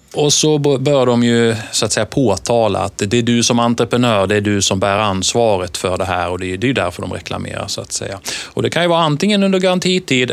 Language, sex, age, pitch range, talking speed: Swedish, male, 30-49, 100-145 Hz, 245 wpm